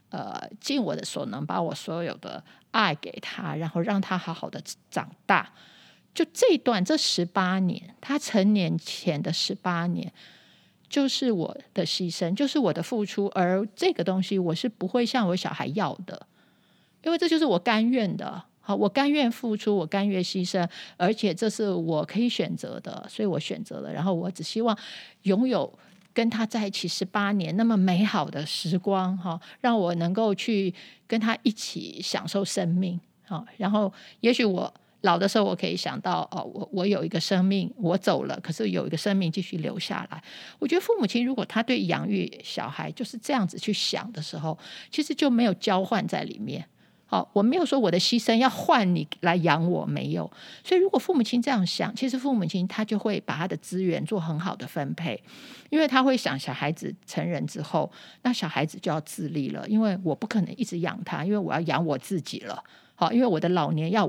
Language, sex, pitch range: Chinese, female, 180-230 Hz